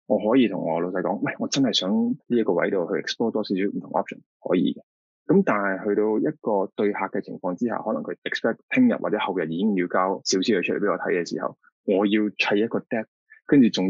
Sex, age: male, 20-39